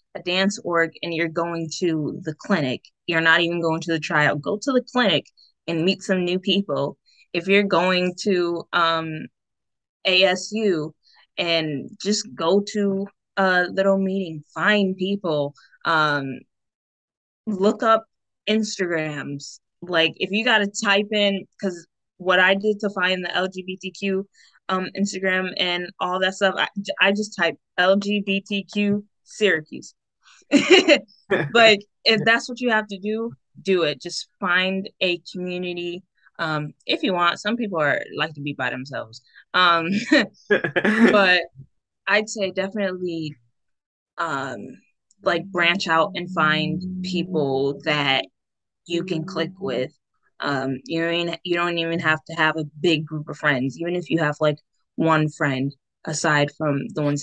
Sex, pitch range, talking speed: female, 155-200 Hz, 145 wpm